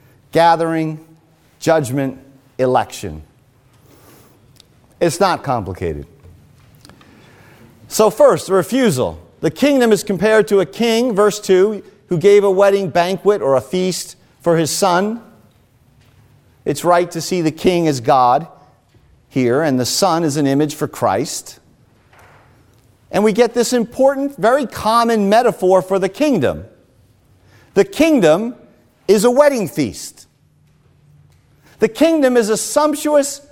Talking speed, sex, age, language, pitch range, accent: 125 wpm, male, 50-69, English, 135-220 Hz, American